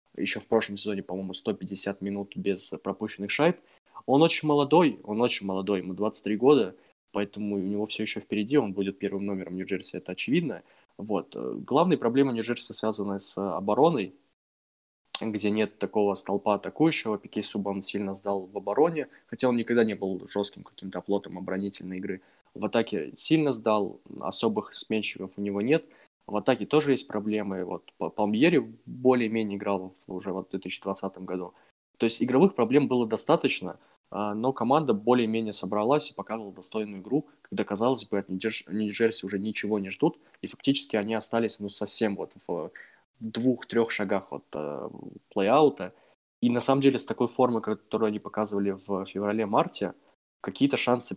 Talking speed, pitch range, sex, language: 155 wpm, 100-115 Hz, male, Russian